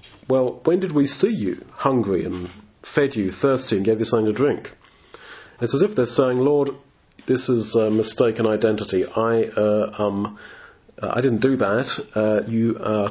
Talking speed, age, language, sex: 175 wpm, 40-59, English, male